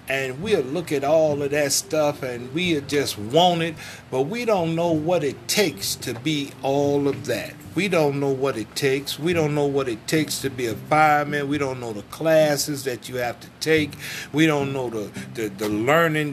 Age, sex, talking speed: 50-69, male, 215 wpm